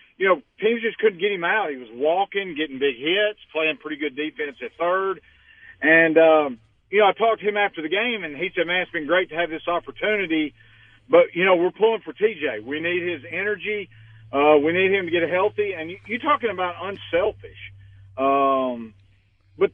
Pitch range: 145-210 Hz